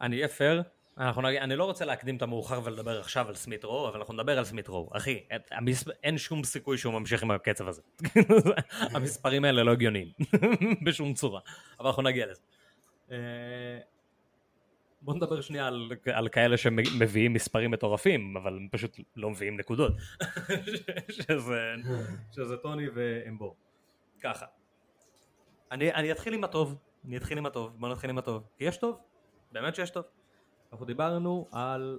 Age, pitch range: 20-39, 110-150 Hz